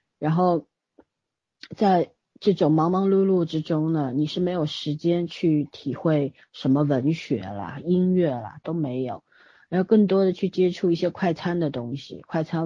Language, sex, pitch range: Chinese, female, 140-175 Hz